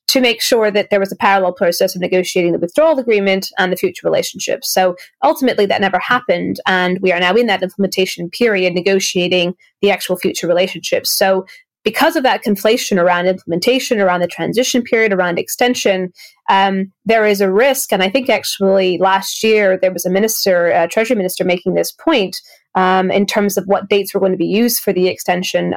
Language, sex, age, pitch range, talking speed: English, female, 20-39, 185-225 Hz, 195 wpm